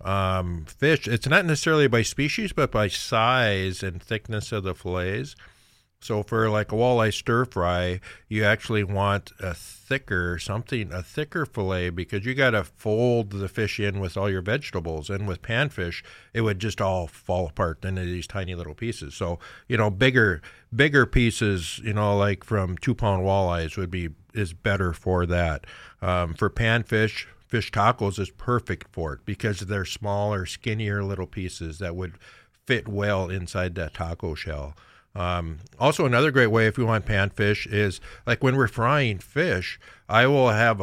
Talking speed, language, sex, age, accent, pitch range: 175 wpm, English, male, 50-69, American, 95-115 Hz